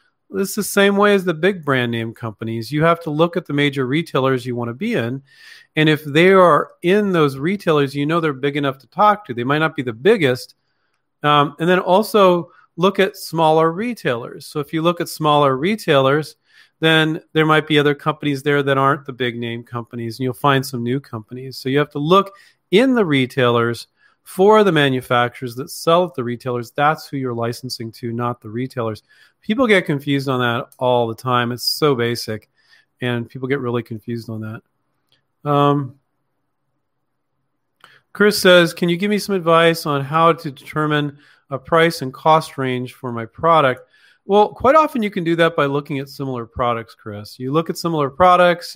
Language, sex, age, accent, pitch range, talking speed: English, male, 40-59, American, 130-165 Hz, 195 wpm